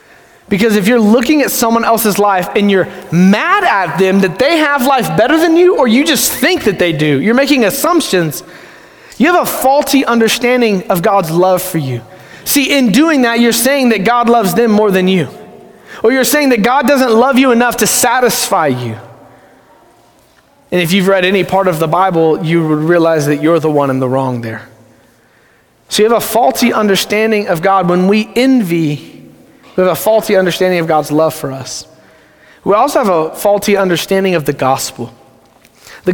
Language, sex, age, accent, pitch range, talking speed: English, male, 30-49, American, 170-235 Hz, 190 wpm